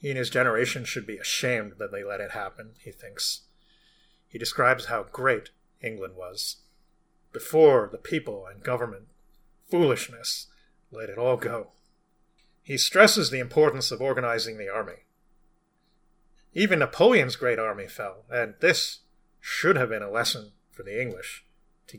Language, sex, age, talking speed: English, male, 30-49, 145 wpm